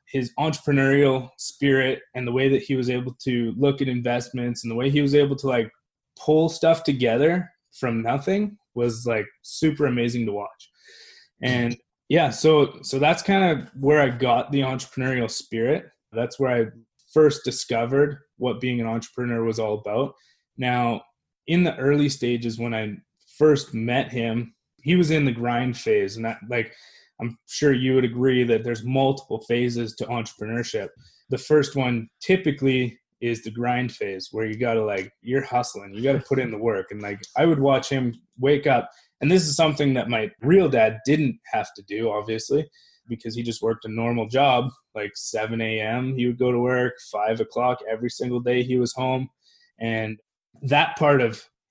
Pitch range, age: 115-140 Hz, 20-39